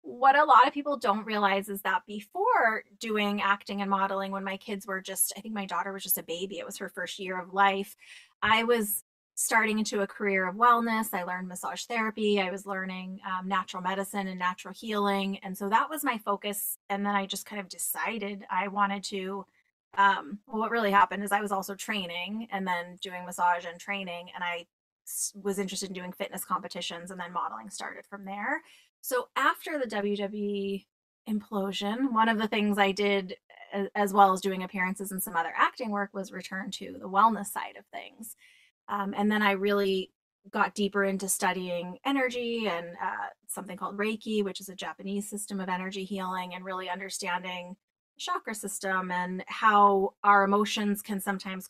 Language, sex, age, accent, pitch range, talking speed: English, female, 30-49, American, 185-210 Hz, 190 wpm